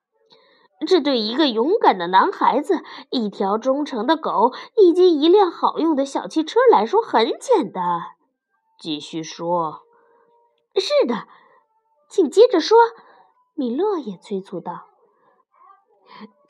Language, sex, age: Chinese, female, 20-39